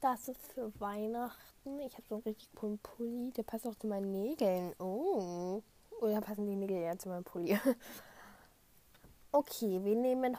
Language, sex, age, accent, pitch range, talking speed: German, female, 10-29, German, 215-260 Hz, 170 wpm